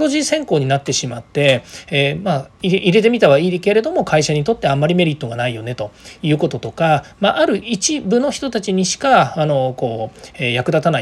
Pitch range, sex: 135-220 Hz, male